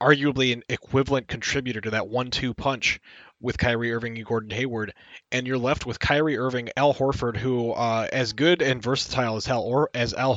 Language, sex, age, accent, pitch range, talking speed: English, male, 20-39, American, 115-135 Hz, 195 wpm